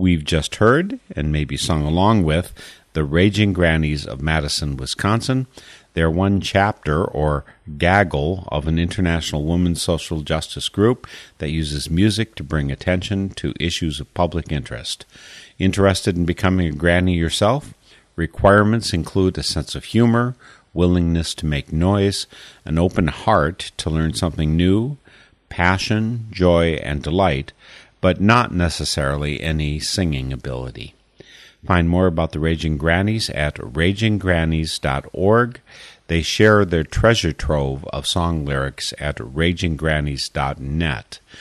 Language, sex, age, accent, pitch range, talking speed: English, male, 50-69, American, 75-95 Hz, 130 wpm